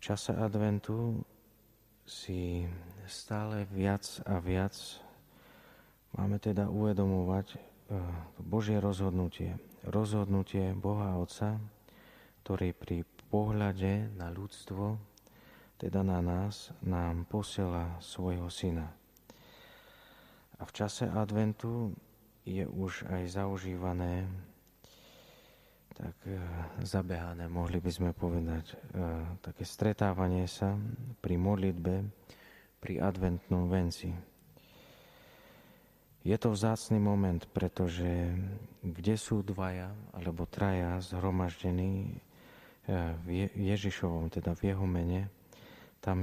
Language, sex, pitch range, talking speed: Slovak, male, 90-105 Hz, 90 wpm